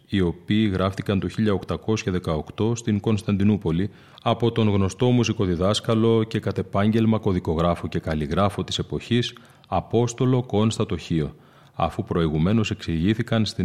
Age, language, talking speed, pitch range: 30-49, Greek, 110 wpm, 90-110 Hz